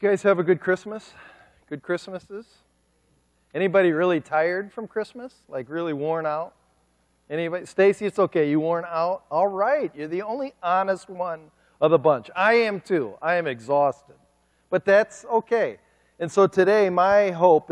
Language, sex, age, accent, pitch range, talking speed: English, male, 40-59, American, 135-190 Hz, 160 wpm